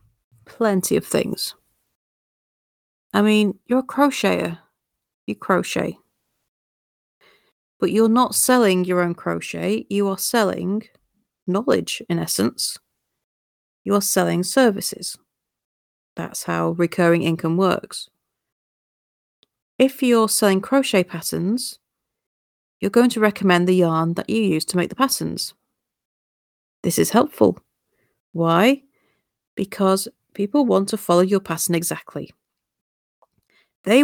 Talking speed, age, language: 110 wpm, 40-59, English